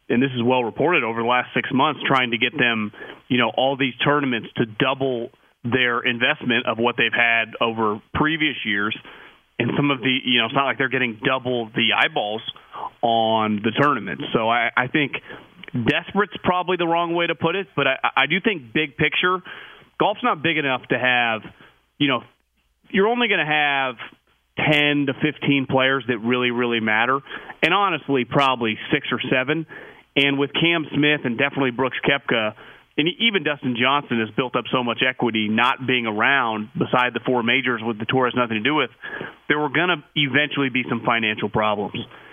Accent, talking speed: American, 190 wpm